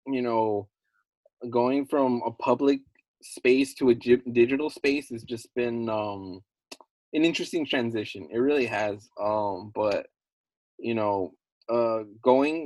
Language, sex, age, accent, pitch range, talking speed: English, male, 20-39, American, 110-130 Hz, 130 wpm